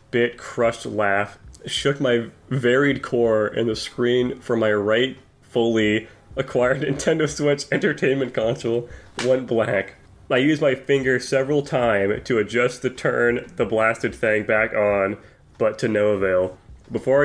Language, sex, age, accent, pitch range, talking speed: English, male, 20-39, American, 105-125 Hz, 145 wpm